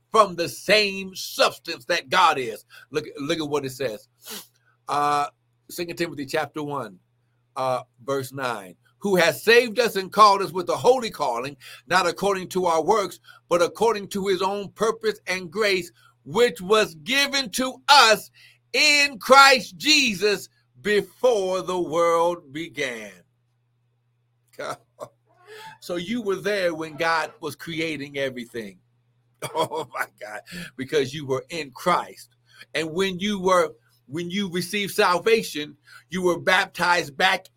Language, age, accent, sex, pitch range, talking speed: English, 60-79, American, male, 145-215 Hz, 140 wpm